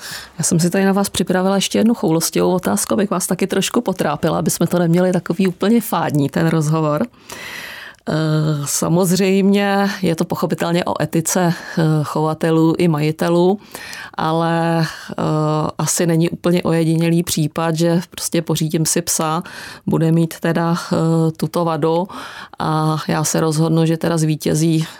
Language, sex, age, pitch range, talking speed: Czech, female, 30-49, 155-175 Hz, 135 wpm